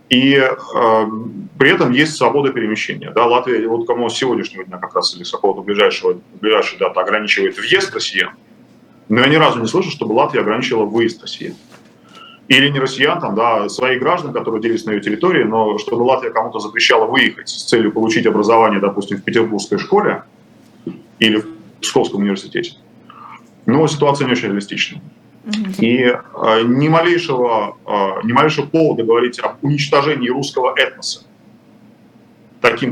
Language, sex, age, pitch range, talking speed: Russian, male, 30-49, 115-165 Hz, 155 wpm